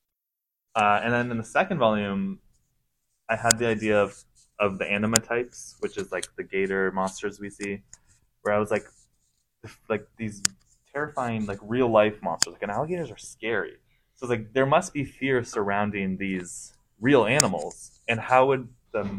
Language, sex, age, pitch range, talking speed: English, male, 20-39, 105-125 Hz, 170 wpm